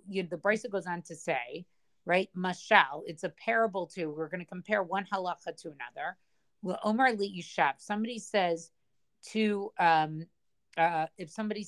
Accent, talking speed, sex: American, 170 wpm, female